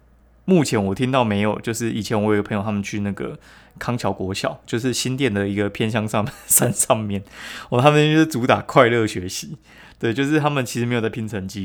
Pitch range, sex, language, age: 100-125 Hz, male, Chinese, 20-39